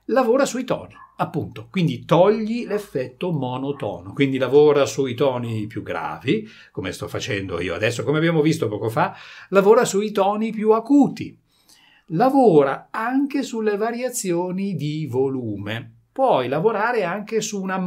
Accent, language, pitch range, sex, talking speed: native, Italian, 125-210 Hz, male, 135 wpm